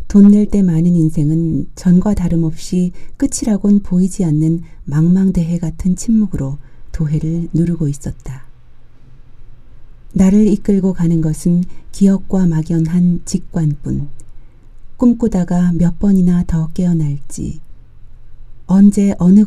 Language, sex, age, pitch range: Korean, female, 40-59, 140-180 Hz